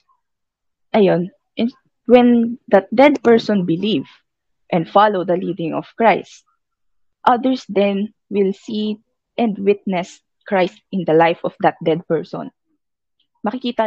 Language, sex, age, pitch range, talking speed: Filipino, female, 20-39, 185-240 Hz, 115 wpm